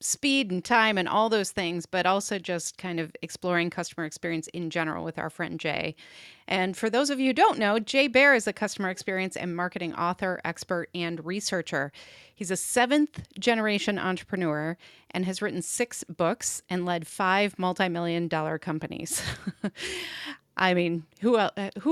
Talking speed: 160 wpm